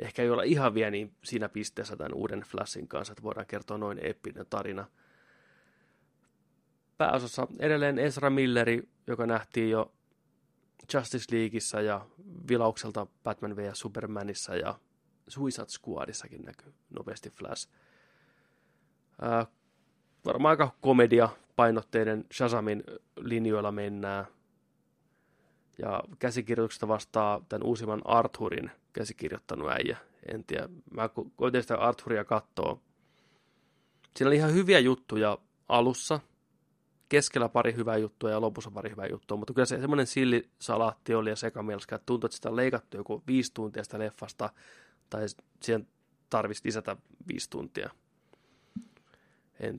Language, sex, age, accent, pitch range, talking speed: Finnish, male, 20-39, native, 110-130 Hz, 125 wpm